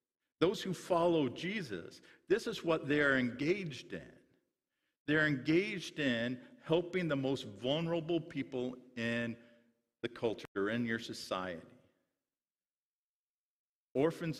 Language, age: English, 50-69